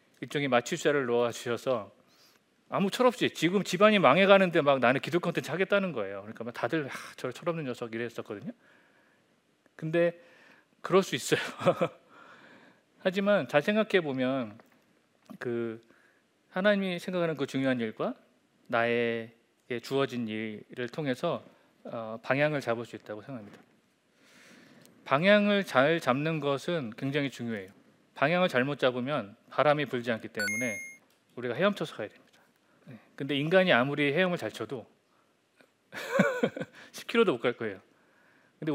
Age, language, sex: 40-59, Korean, male